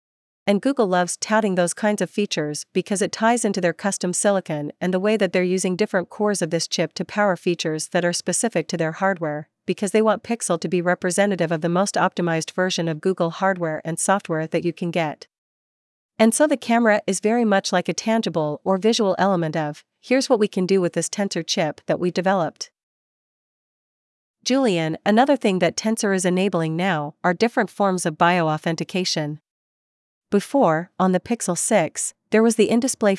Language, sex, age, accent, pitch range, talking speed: English, female, 40-59, American, 170-210 Hz, 190 wpm